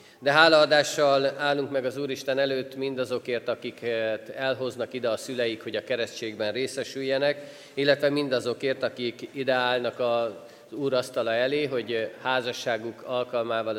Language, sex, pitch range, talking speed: Hungarian, male, 110-140 Hz, 130 wpm